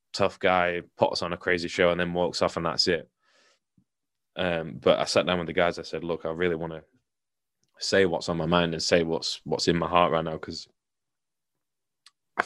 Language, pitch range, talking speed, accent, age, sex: English, 80-95 Hz, 215 wpm, British, 20-39, male